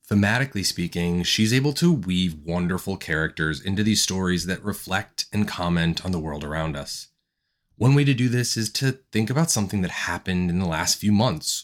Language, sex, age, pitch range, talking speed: English, male, 30-49, 90-120 Hz, 190 wpm